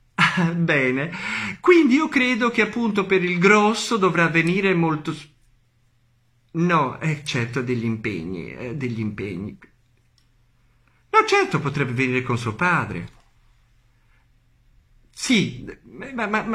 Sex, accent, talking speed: male, native, 115 wpm